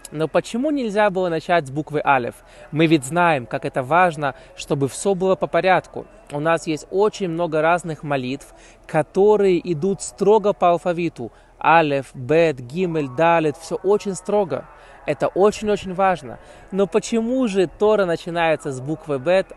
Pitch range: 150-200 Hz